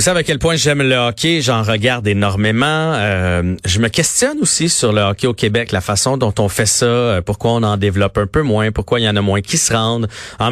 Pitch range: 100-130 Hz